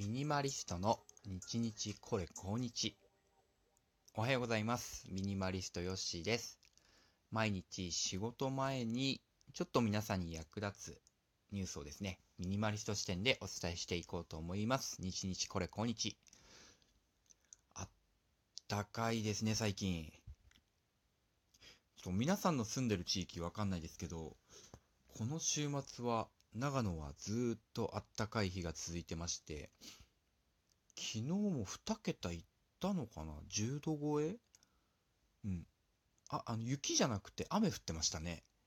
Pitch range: 85-115 Hz